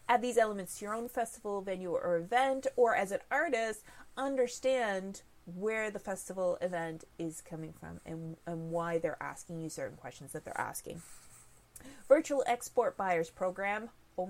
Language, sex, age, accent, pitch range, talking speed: English, female, 30-49, American, 180-265 Hz, 155 wpm